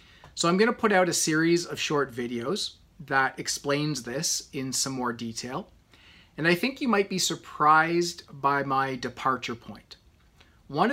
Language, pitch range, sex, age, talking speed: English, 125-165 Hz, male, 30-49, 165 wpm